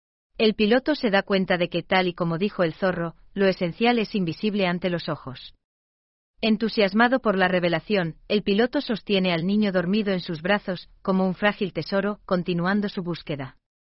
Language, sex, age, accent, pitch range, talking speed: Spanish, female, 40-59, Spanish, 170-210 Hz, 170 wpm